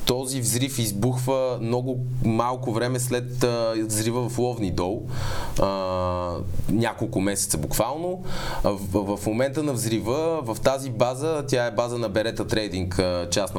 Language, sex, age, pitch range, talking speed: Bulgarian, male, 20-39, 105-130 Hz, 130 wpm